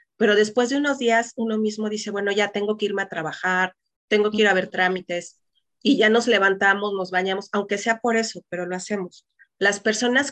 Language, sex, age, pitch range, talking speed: Spanish, female, 30-49, 190-235 Hz, 210 wpm